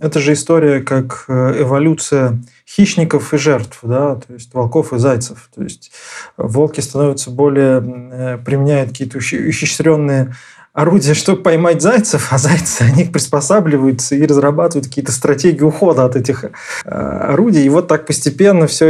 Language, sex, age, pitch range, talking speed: Russian, male, 20-39, 125-155 Hz, 135 wpm